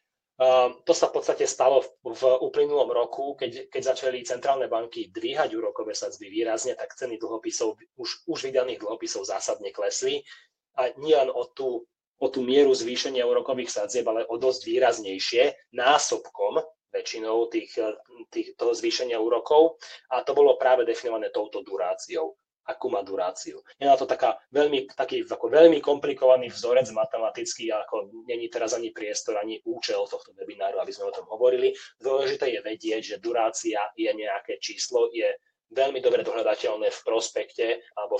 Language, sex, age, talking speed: Slovak, male, 30-49, 155 wpm